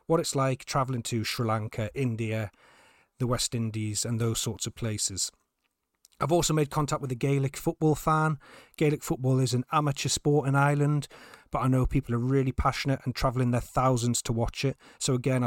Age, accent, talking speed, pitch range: 30-49, British, 190 wpm, 115-145 Hz